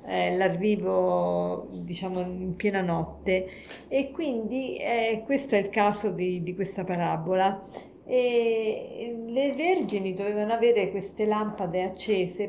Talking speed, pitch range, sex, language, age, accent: 115 wpm, 185-225 Hz, female, Italian, 40-59, native